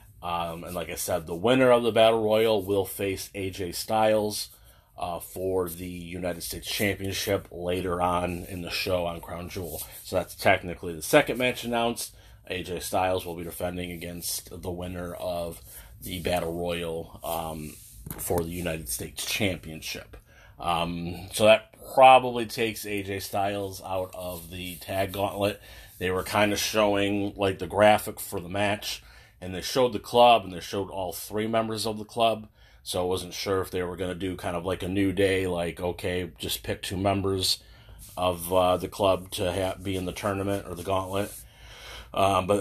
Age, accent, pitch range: 30-49, American, 90-105 Hz